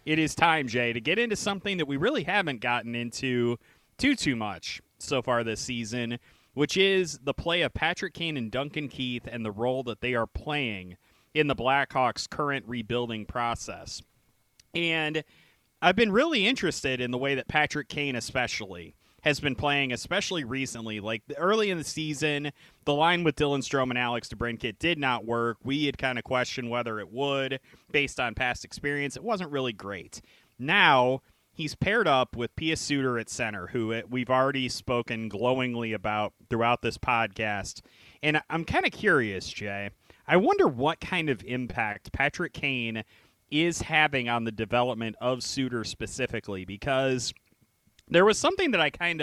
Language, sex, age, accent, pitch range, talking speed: English, male, 30-49, American, 115-145 Hz, 170 wpm